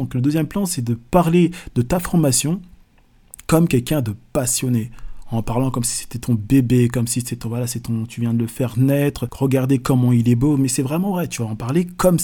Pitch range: 125-160 Hz